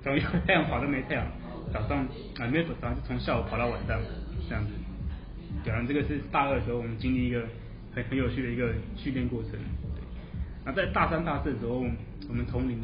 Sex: male